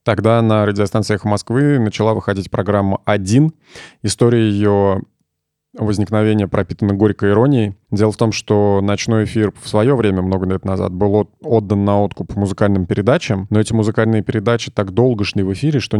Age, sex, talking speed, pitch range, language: 20-39, male, 160 wpm, 100-120 Hz, Russian